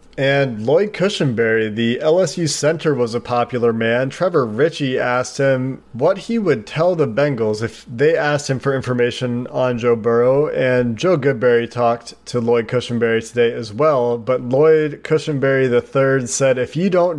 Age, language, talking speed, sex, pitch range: 30-49, English, 165 wpm, male, 120-140 Hz